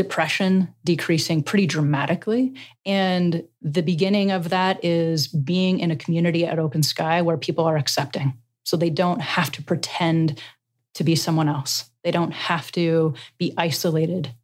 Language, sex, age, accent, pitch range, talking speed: English, female, 30-49, American, 155-180 Hz, 155 wpm